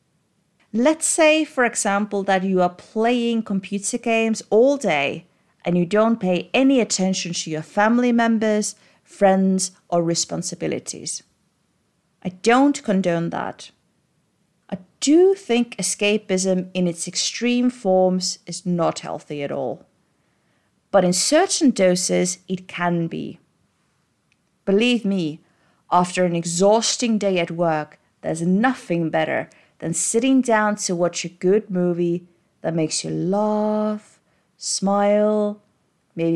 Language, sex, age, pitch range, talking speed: English, female, 30-49, 175-215 Hz, 120 wpm